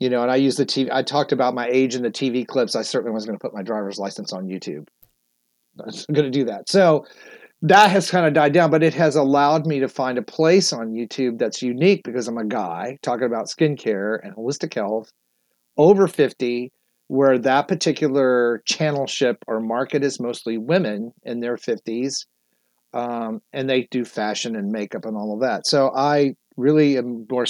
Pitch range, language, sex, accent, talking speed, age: 110-140 Hz, English, male, American, 200 wpm, 40-59